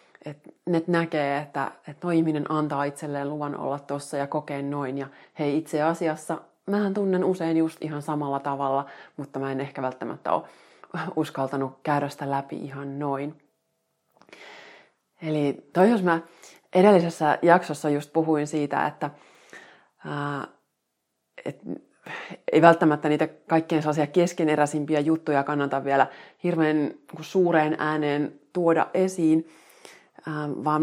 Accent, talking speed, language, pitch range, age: native, 125 wpm, Finnish, 145-165 Hz, 30-49